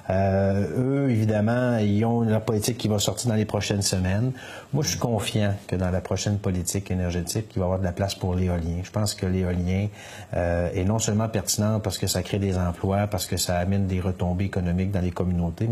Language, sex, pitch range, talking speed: French, male, 95-115 Hz, 220 wpm